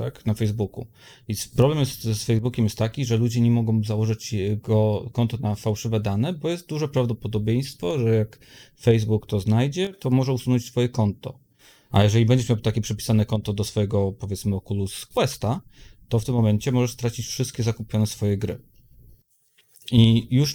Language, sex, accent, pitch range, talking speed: Polish, male, native, 105-125 Hz, 165 wpm